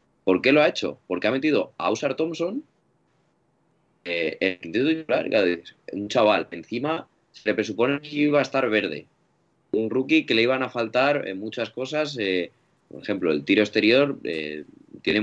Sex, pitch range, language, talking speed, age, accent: male, 100-140 Hz, Spanish, 170 wpm, 20-39, Spanish